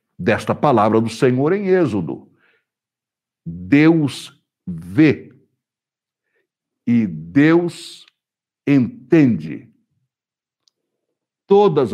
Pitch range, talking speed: 120-175 Hz, 60 wpm